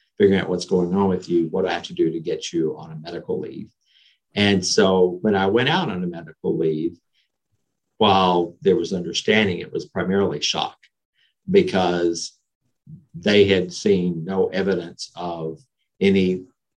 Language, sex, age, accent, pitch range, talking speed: English, male, 50-69, American, 85-110 Hz, 160 wpm